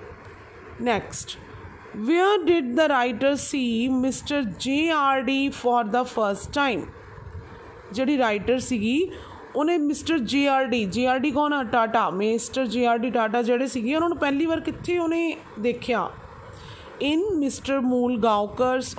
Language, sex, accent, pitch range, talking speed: English, female, Indian, 235-305 Hz, 115 wpm